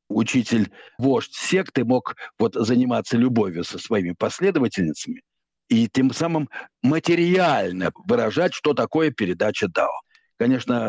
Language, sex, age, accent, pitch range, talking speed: Russian, male, 60-79, native, 115-160 Hz, 100 wpm